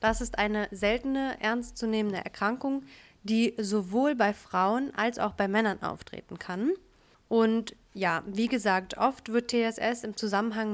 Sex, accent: female, German